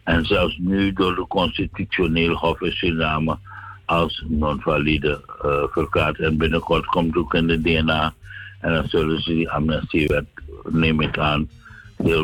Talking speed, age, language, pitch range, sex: 145 wpm, 60-79, Dutch, 80-90 Hz, male